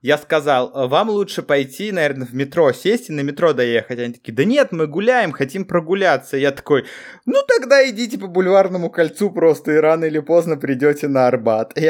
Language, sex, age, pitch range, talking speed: Russian, male, 20-39, 130-185 Hz, 190 wpm